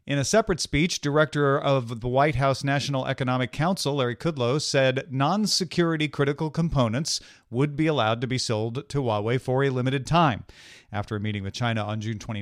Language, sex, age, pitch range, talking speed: English, male, 40-59, 120-160 Hz, 180 wpm